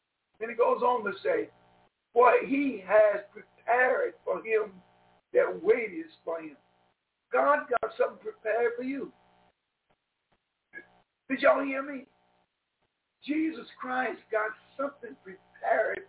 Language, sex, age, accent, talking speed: English, male, 60-79, American, 120 wpm